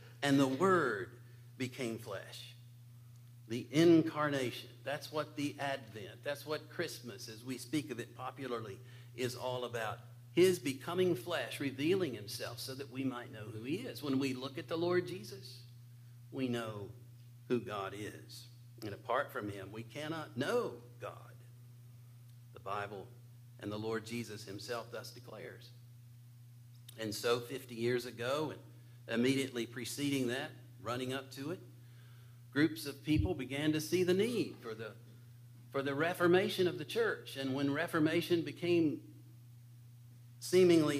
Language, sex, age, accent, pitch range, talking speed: English, male, 50-69, American, 120-145 Hz, 145 wpm